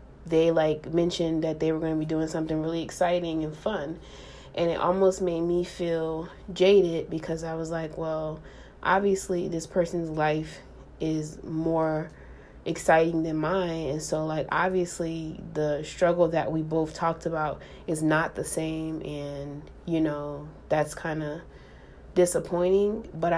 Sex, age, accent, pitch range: female, 20-39, American, 155-175 Hz